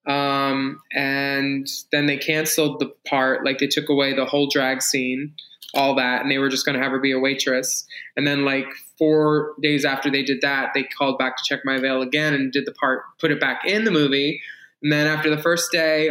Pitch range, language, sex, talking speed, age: 140-155 Hz, English, male, 225 wpm, 20-39